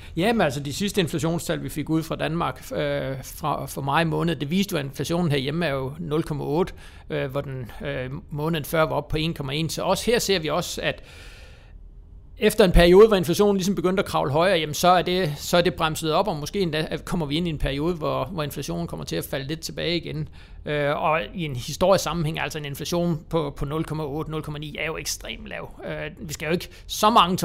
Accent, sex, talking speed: native, male, 220 wpm